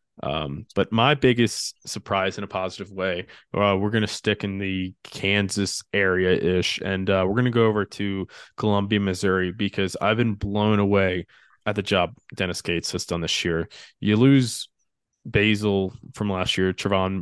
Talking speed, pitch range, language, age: 175 wpm, 95-105 Hz, English, 20-39